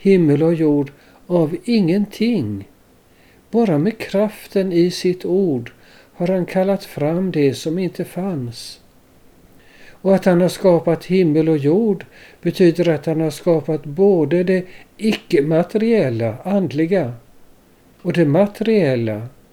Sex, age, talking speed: male, 60-79, 120 wpm